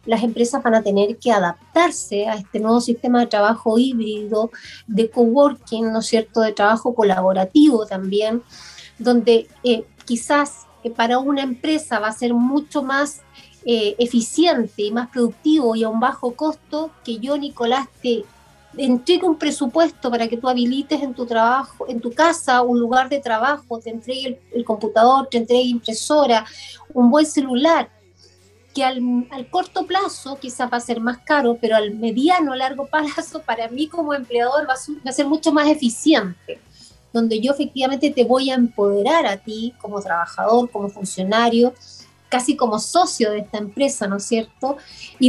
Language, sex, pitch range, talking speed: Spanish, female, 230-300 Hz, 170 wpm